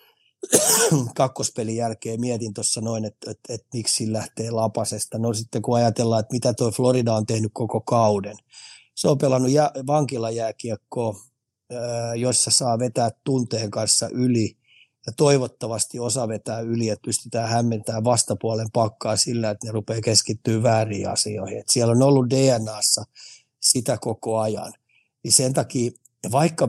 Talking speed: 145 wpm